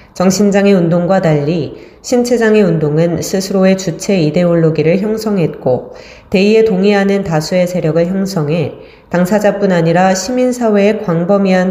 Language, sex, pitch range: Korean, female, 165-205 Hz